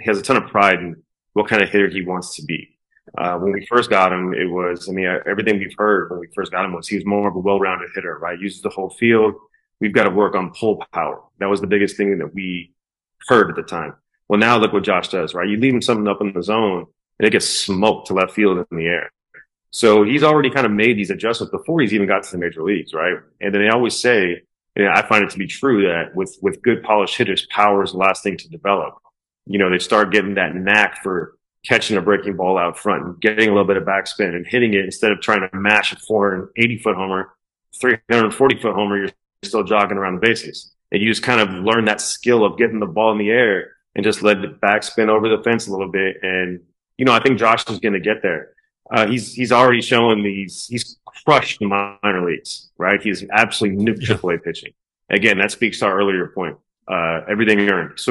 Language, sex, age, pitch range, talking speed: English, male, 30-49, 95-110 Hz, 245 wpm